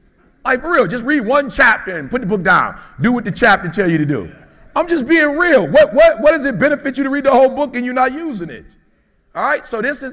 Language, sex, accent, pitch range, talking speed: English, male, American, 155-245 Hz, 275 wpm